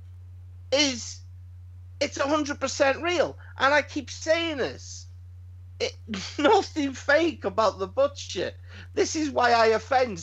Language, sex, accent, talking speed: English, male, British, 110 wpm